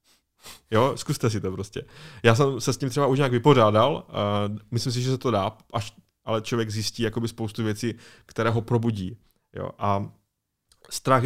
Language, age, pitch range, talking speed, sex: Czech, 20-39, 105-120 Hz, 160 wpm, male